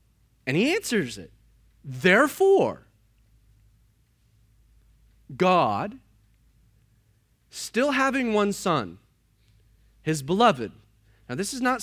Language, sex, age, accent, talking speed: English, male, 30-49, American, 80 wpm